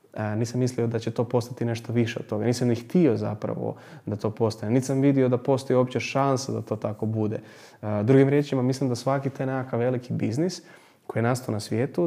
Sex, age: male, 20-39